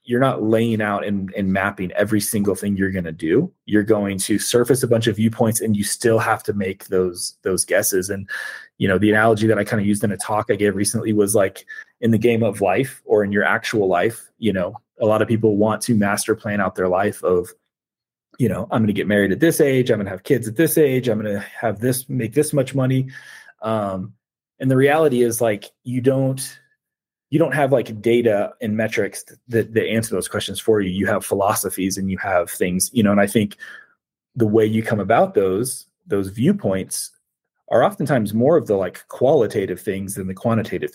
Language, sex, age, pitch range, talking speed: English, male, 20-39, 100-120 Hz, 225 wpm